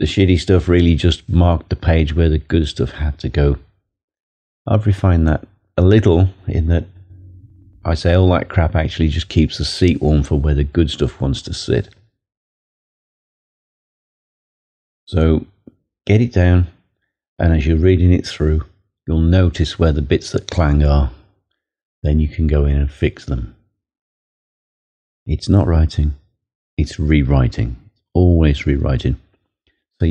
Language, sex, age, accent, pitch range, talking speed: English, male, 40-59, British, 75-95 Hz, 150 wpm